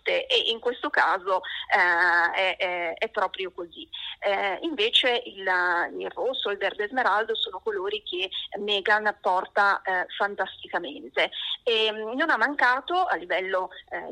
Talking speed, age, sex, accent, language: 130 wpm, 30-49, female, native, Italian